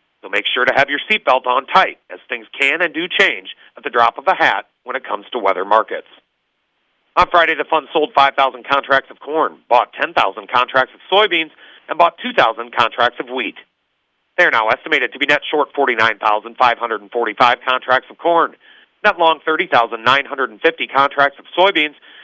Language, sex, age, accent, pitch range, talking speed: English, male, 40-59, American, 125-170 Hz, 175 wpm